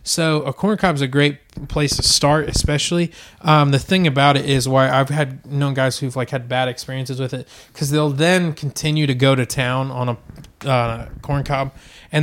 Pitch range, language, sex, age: 125-145 Hz, English, male, 20-39